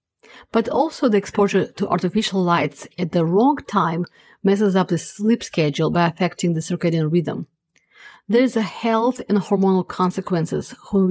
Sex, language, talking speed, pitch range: female, English, 155 wpm, 175-215 Hz